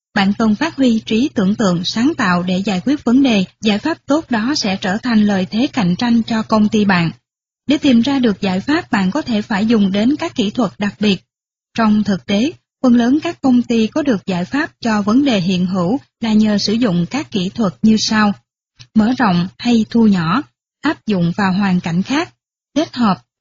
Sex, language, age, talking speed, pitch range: female, Vietnamese, 20-39, 220 wpm, 195-250 Hz